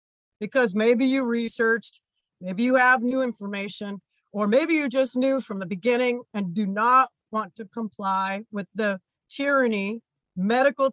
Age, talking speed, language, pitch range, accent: 40-59, 150 wpm, English, 205-265 Hz, American